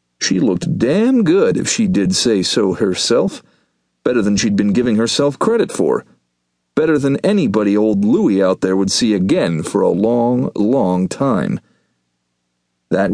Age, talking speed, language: 40-59, 155 wpm, English